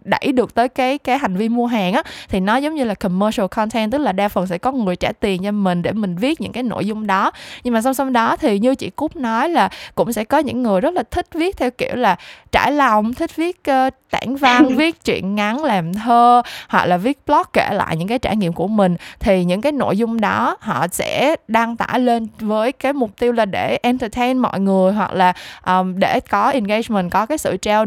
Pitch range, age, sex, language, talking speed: 190-255 Hz, 20-39, female, Vietnamese, 245 wpm